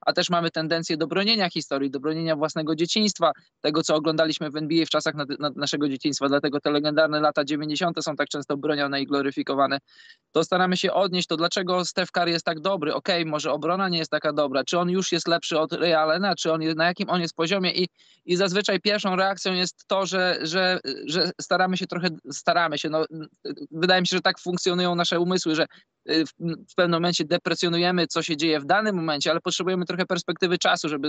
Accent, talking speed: native, 210 wpm